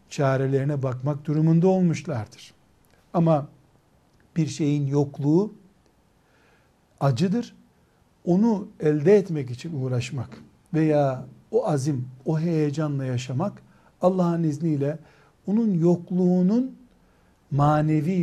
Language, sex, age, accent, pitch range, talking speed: Turkish, male, 60-79, native, 135-180 Hz, 80 wpm